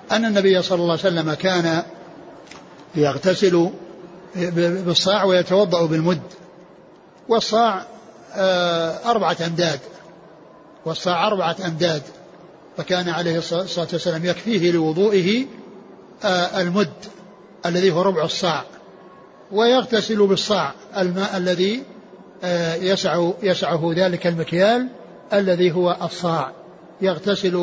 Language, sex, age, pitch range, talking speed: Arabic, male, 60-79, 175-200 Hz, 85 wpm